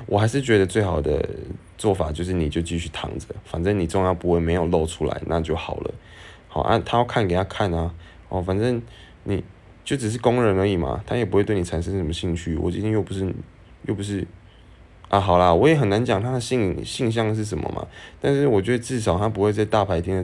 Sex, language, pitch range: male, Chinese, 90-110 Hz